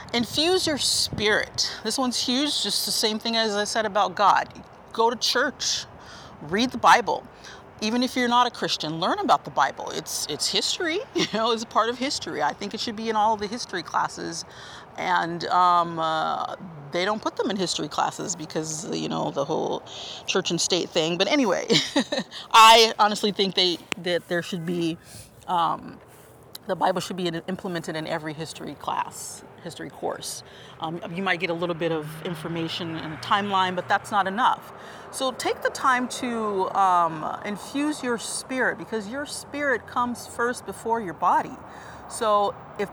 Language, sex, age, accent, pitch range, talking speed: English, female, 30-49, American, 175-240 Hz, 180 wpm